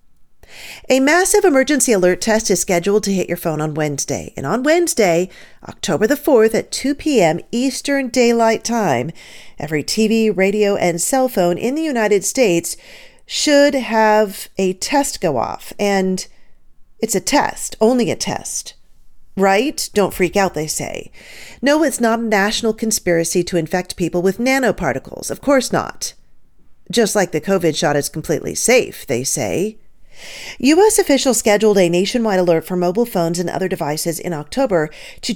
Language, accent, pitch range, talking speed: English, American, 175-255 Hz, 160 wpm